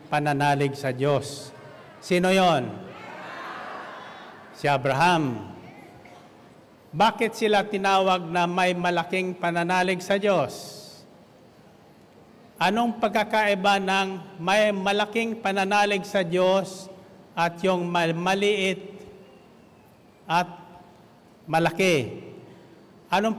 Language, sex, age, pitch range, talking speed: Filipino, male, 50-69, 170-205 Hz, 75 wpm